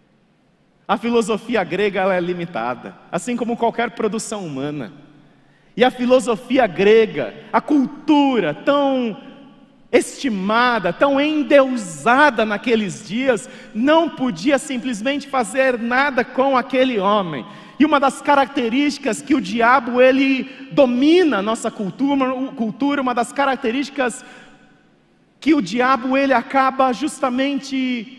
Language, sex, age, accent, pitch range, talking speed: Portuguese, male, 40-59, Brazilian, 230-280 Hz, 105 wpm